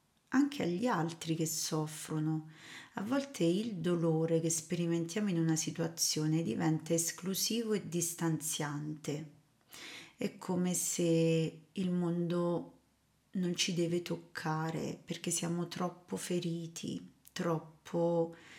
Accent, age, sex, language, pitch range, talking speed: native, 30-49, female, Italian, 160-175 Hz, 105 wpm